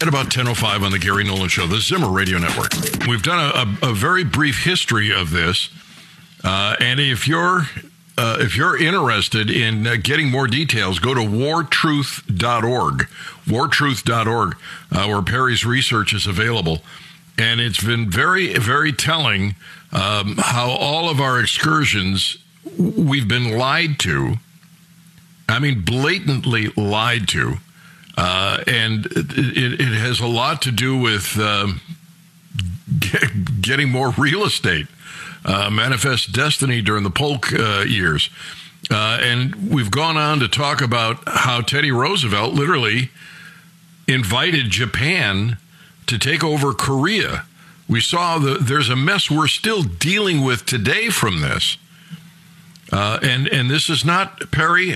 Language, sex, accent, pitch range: English, male, American, 110-160 Hz